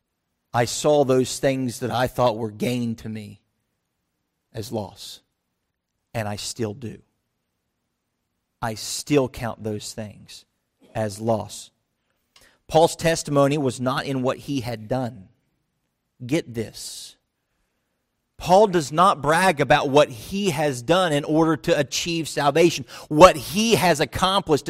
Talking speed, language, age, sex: 130 wpm, English, 40-59, male